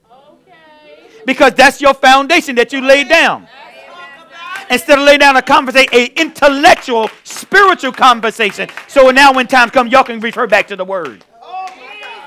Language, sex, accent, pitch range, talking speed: English, male, American, 215-290 Hz, 145 wpm